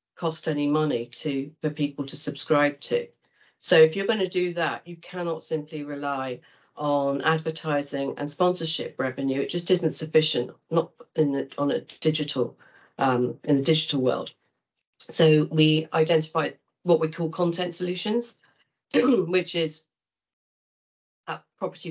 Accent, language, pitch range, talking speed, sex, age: British, English, 140-160 Hz, 140 wpm, female, 40-59